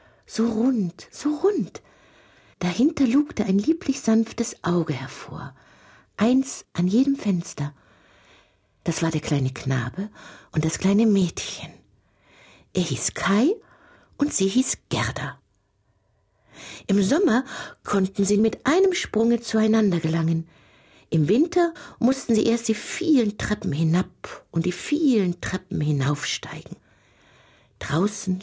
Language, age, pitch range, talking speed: German, 60-79, 145-220 Hz, 115 wpm